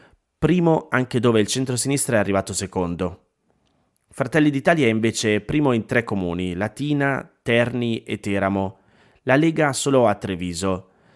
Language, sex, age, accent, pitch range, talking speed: Italian, male, 20-39, native, 95-120 Hz, 140 wpm